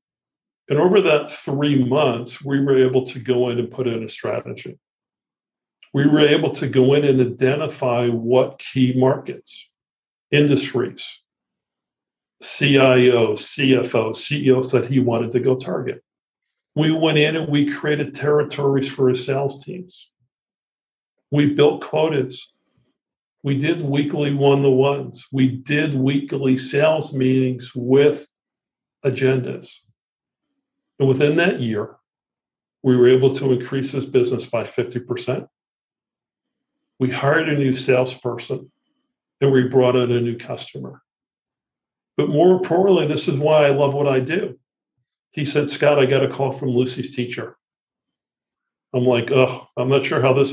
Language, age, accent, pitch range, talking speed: English, 50-69, American, 125-145 Hz, 140 wpm